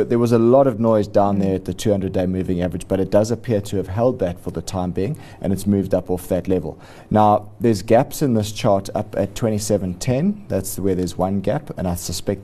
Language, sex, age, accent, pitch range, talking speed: English, male, 30-49, Australian, 90-105 Hz, 235 wpm